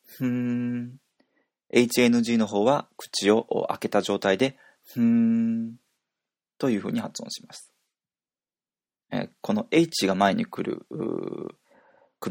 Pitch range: 105-145 Hz